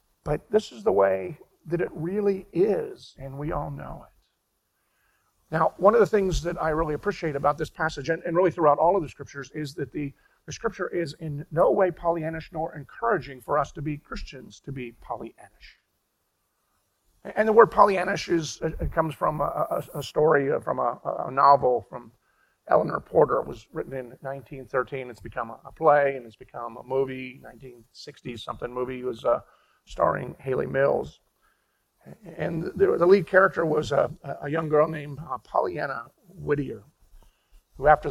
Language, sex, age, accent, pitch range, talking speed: English, male, 50-69, American, 135-170 Hz, 170 wpm